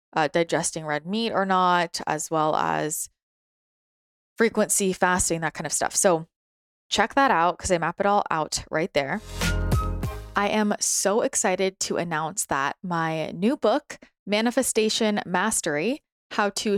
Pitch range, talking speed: 170-205 Hz, 145 wpm